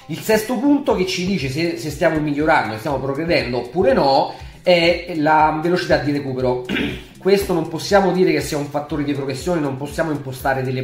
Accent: native